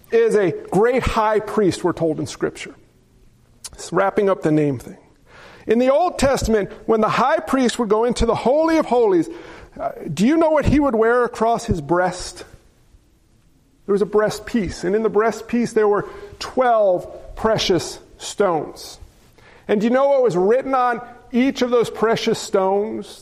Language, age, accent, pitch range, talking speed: English, 40-59, American, 210-255 Hz, 175 wpm